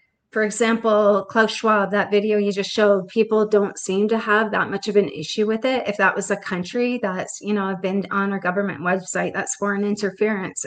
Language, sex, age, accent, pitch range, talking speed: English, female, 30-49, American, 190-215 Hz, 215 wpm